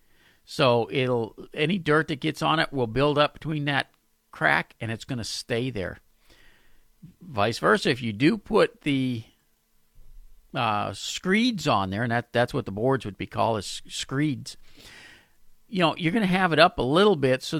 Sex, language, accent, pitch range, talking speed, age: male, English, American, 115-155 Hz, 185 wpm, 50-69